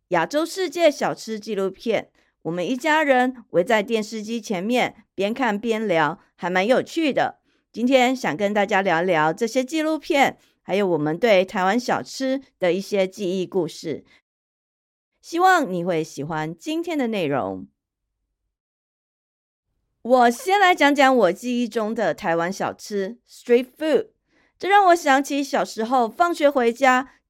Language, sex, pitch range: Chinese, female, 190-275 Hz